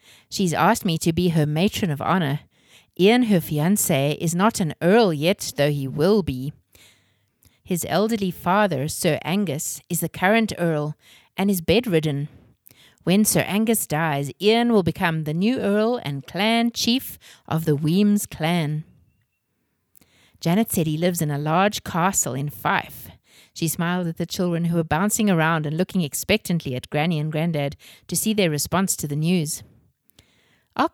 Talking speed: 165 wpm